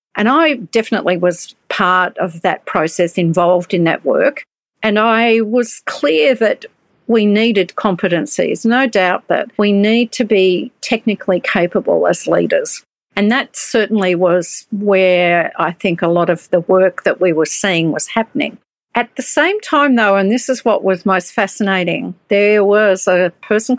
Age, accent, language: 50-69, Australian, English